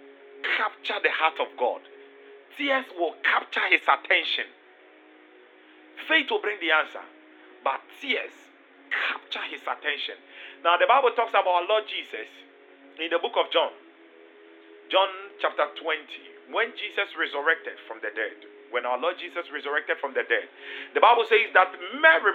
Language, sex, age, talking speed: English, male, 40-59, 150 wpm